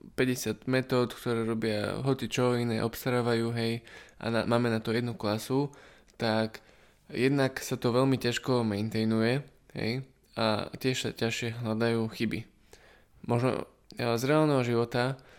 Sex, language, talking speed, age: male, Slovak, 135 wpm, 20-39